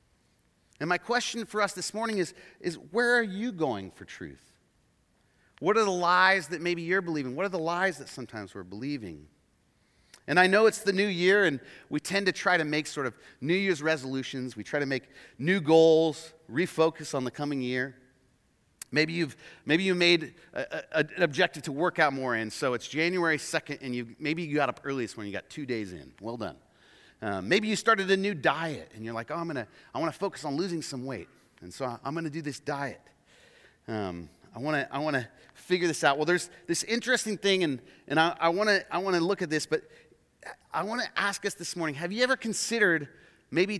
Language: English